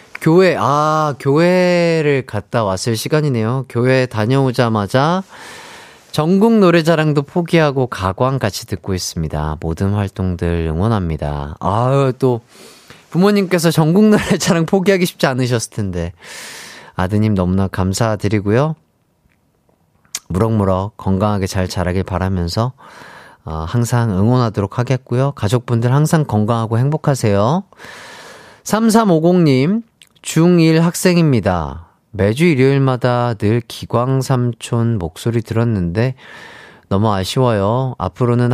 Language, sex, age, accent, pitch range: Korean, male, 30-49, native, 100-140 Hz